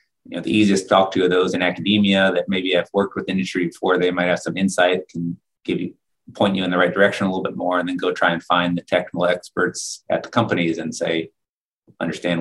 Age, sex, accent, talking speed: 30-49, male, American, 245 wpm